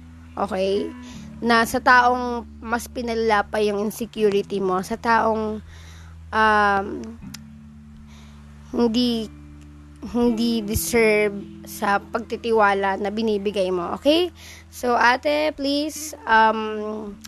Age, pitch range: 20-39, 200-235 Hz